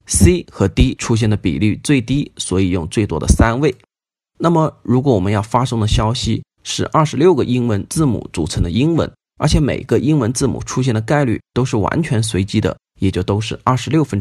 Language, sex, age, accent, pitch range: Chinese, male, 30-49, native, 95-125 Hz